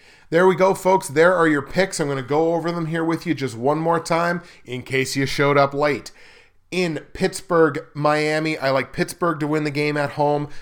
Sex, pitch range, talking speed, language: male, 135-160 Hz, 220 wpm, English